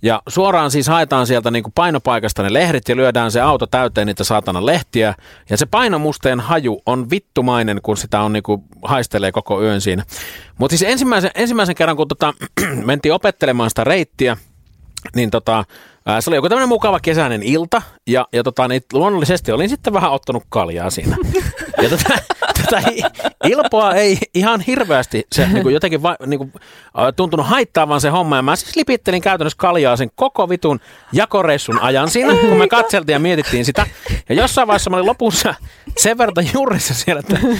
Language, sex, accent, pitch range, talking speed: Finnish, male, native, 130-215 Hz, 175 wpm